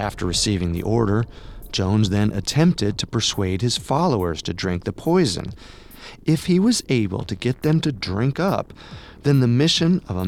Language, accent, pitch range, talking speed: English, American, 95-125 Hz, 175 wpm